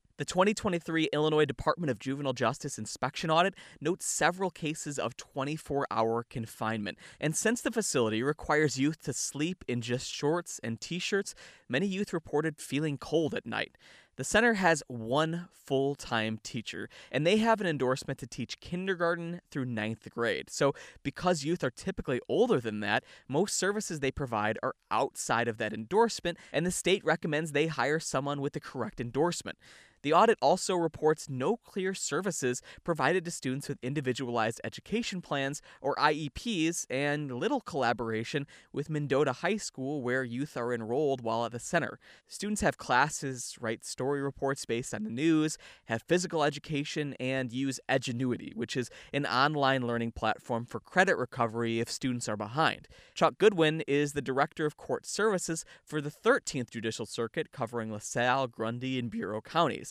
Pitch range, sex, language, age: 120-160 Hz, male, English, 20-39